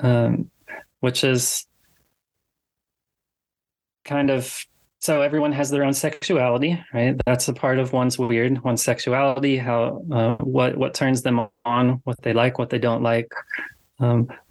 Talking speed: 145 wpm